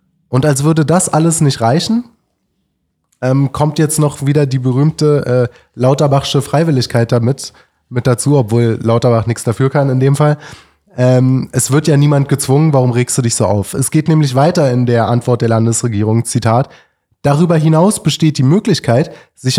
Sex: male